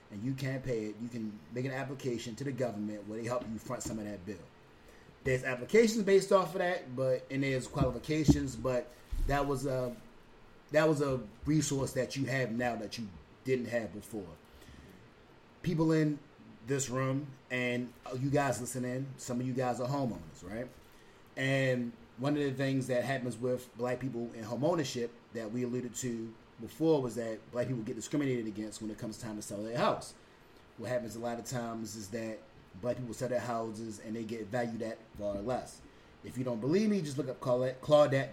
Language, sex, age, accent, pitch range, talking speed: English, male, 30-49, American, 115-140 Hz, 195 wpm